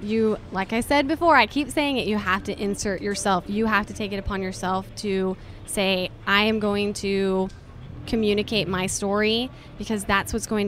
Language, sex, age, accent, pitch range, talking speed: English, female, 10-29, American, 190-220 Hz, 190 wpm